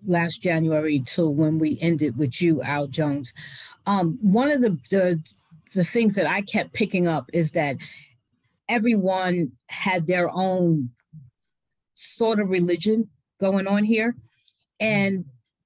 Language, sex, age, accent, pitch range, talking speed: English, female, 40-59, American, 165-225 Hz, 135 wpm